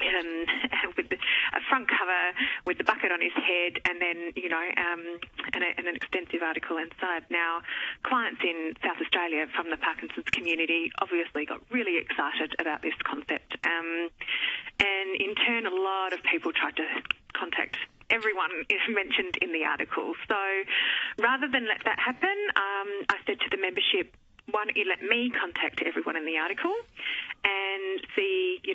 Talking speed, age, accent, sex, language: 170 wpm, 30-49, Australian, female, English